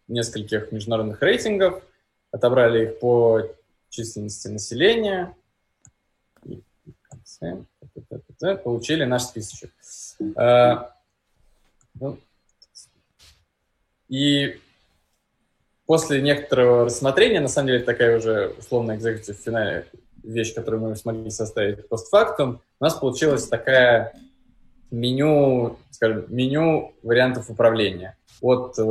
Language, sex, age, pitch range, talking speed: Russian, male, 20-39, 110-130 Hz, 85 wpm